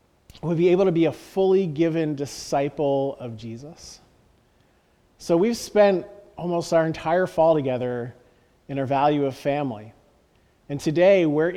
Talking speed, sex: 140 wpm, male